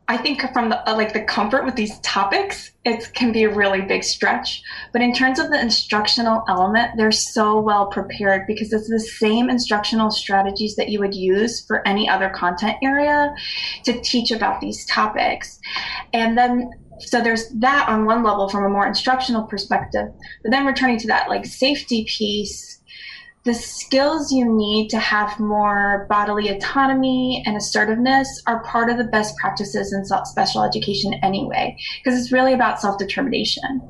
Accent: American